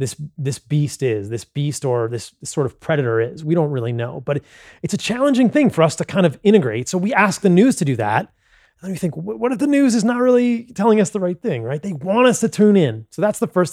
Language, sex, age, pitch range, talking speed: English, male, 30-49, 140-205 Hz, 275 wpm